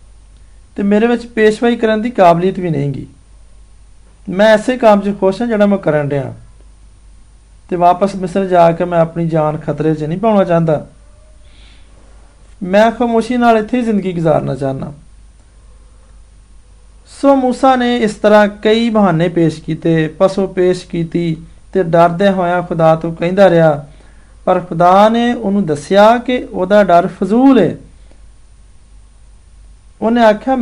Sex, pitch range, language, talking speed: male, 125-210 Hz, Hindi, 120 wpm